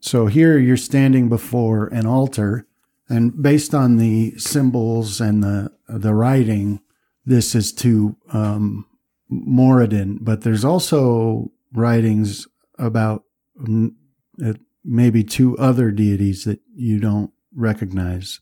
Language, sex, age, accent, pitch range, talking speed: English, male, 50-69, American, 105-125 Hz, 110 wpm